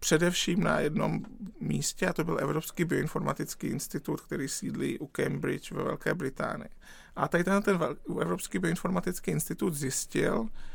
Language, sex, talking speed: Czech, male, 140 wpm